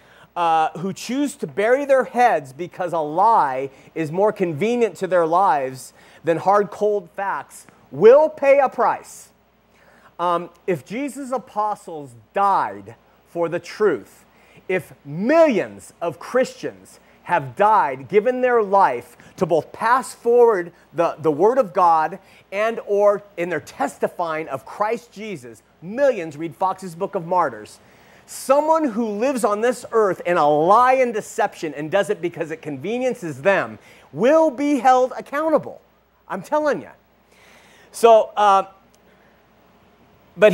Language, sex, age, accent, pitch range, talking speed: English, male, 40-59, American, 155-220 Hz, 135 wpm